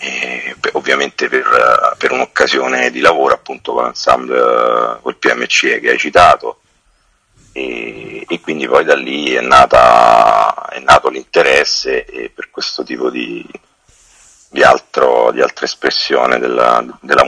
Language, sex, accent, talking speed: Italian, male, native, 120 wpm